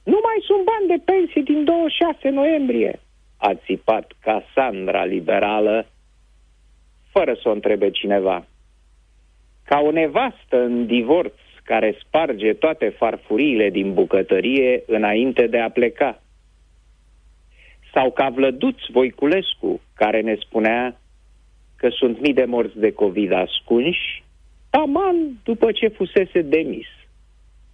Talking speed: 115 wpm